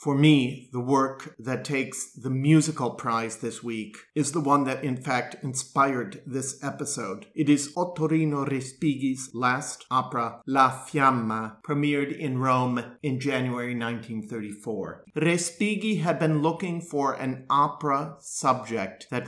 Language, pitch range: English, 125-145 Hz